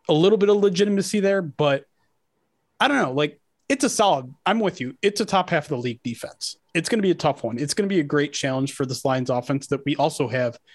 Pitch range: 135-170 Hz